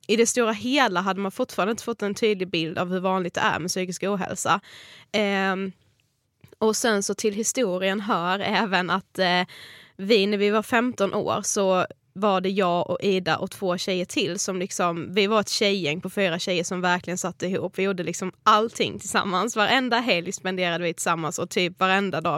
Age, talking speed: 10-29, 195 wpm